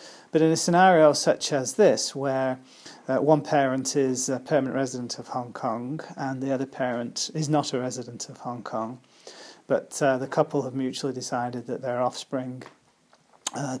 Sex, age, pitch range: male, 30-49, 125-150 Hz